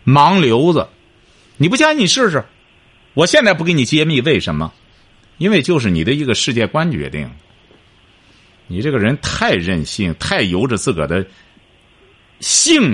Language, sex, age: Chinese, male, 50-69